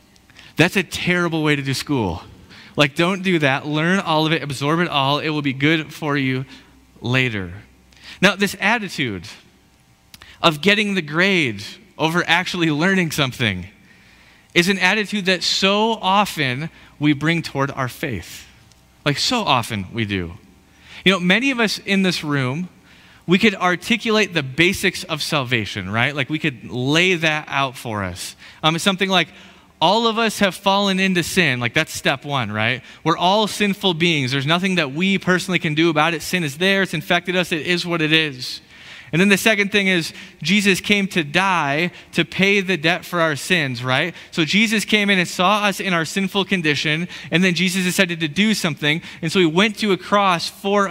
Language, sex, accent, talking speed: English, male, American, 190 wpm